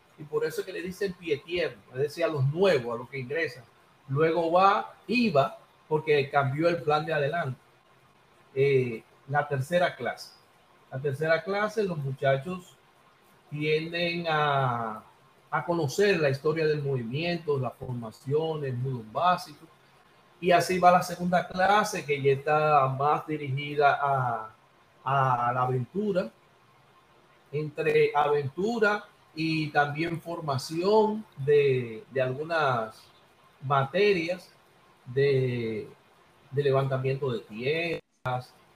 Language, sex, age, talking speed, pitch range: Spanish, male, 60-79, 120 wpm, 135-185 Hz